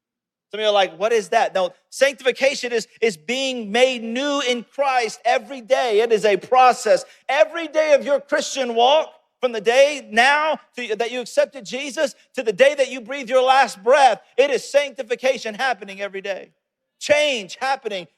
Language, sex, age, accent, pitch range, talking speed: English, male, 40-59, American, 215-275 Hz, 180 wpm